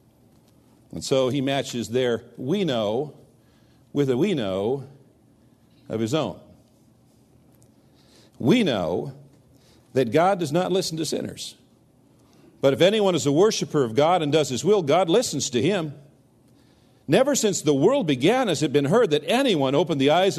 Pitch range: 120-160 Hz